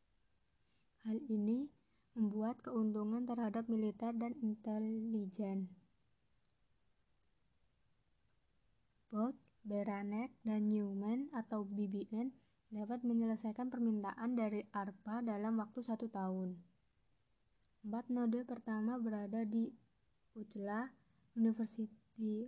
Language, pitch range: Indonesian, 205-230 Hz